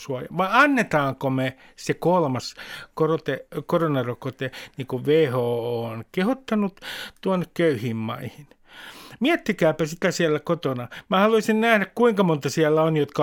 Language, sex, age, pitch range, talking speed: Finnish, male, 50-69, 130-170 Hz, 120 wpm